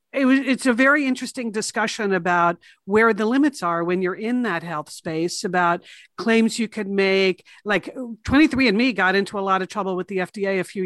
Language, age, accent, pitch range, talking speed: English, 50-69, American, 180-225 Hz, 200 wpm